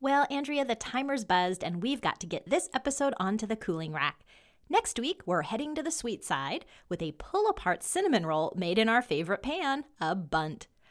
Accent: American